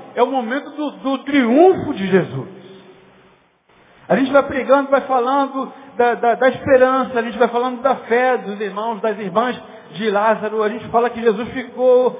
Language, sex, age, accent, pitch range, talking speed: Portuguese, male, 50-69, Brazilian, 220-275 Hz, 175 wpm